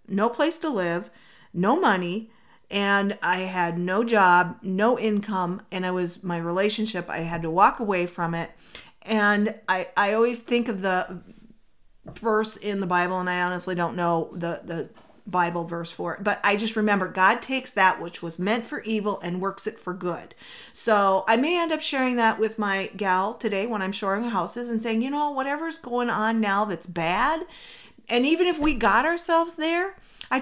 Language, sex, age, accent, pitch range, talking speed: English, female, 40-59, American, 185-240 Hz, 190 wpm